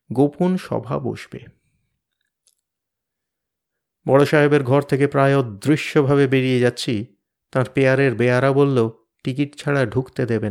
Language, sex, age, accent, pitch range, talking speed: Bengali, male, 50-69, native, 125-165 Hz, 110 wpm